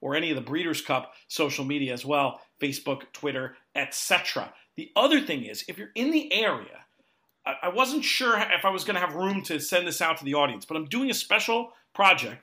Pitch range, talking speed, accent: 145-195 Hz, 215 wpm, American